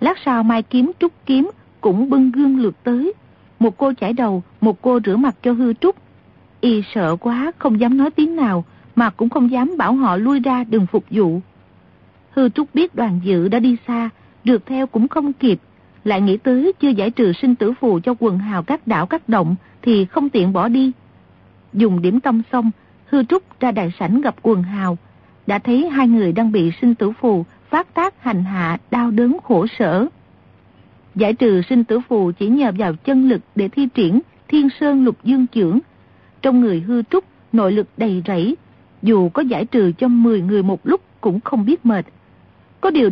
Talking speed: 200 wpm